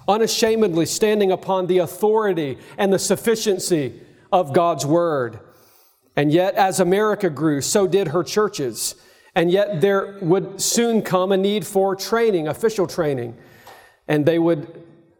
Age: 40-59